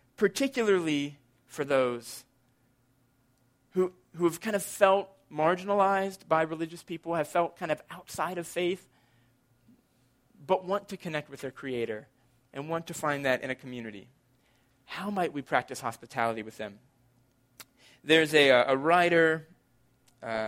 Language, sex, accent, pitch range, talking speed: English, male, American, 130-165 Hz, 140 wpm